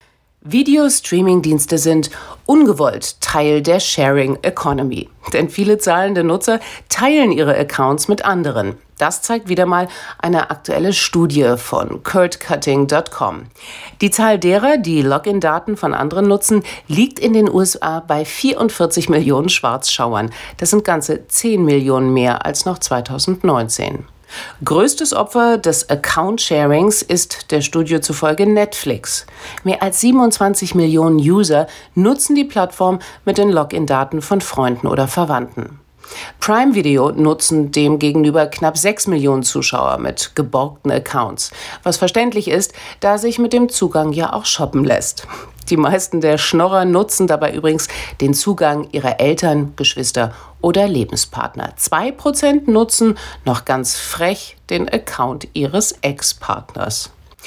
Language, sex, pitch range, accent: German, female, 150-205 Hz, German